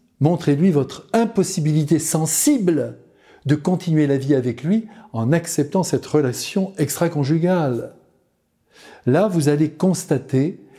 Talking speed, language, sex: 105 wpm, French, male